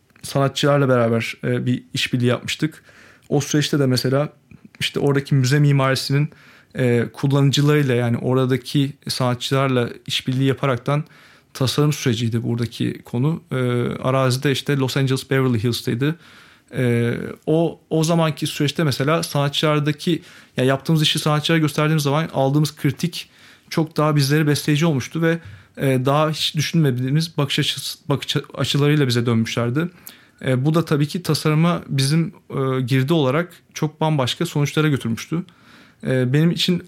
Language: Turkish